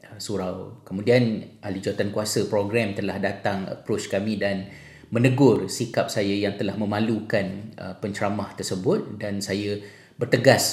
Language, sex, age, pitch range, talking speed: Malay, male, 30-49, 100-115 Hz, 130 wpm